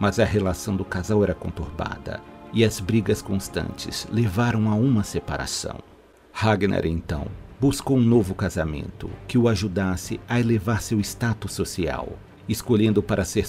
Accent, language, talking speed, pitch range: Brazilian, Portuguese, 140 wpm, 95-115 Hz